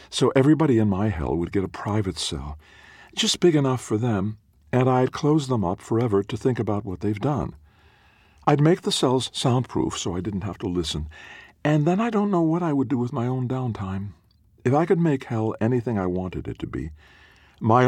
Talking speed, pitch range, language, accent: 210 wpm, 85-130 Hz, English, American